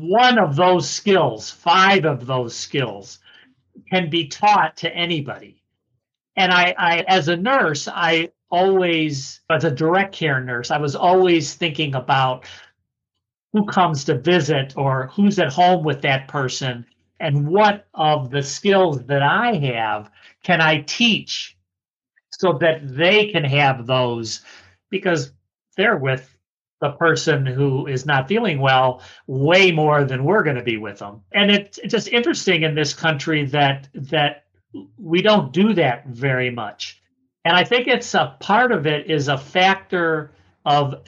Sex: male